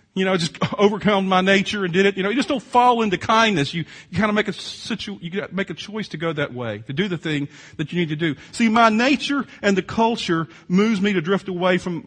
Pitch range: 175-225 Hz